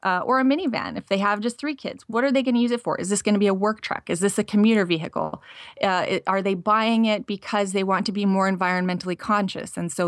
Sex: female